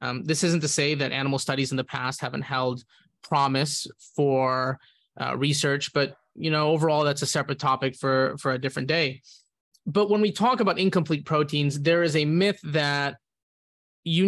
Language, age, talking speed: English, 20-39, 180 wpm